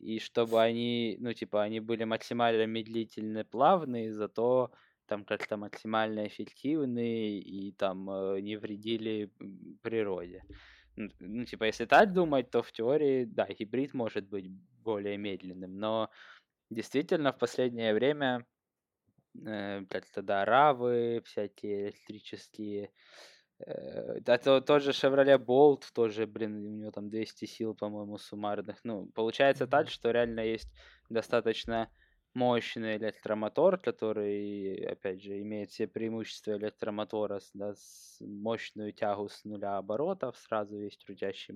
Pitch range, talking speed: 105-115 Hz, 125 wpm